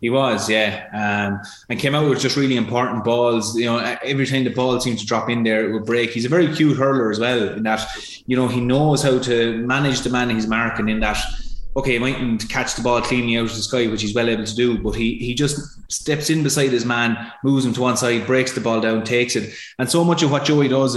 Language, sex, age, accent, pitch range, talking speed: English, male, 20-39, Irish, 115-140 Hz, 265 wpm